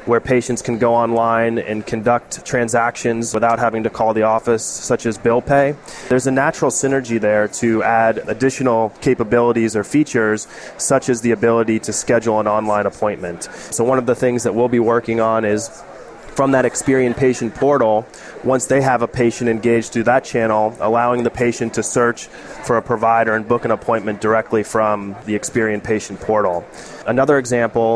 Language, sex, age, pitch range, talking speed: English, male, 30-49, 110-120 Hz, 180 wpm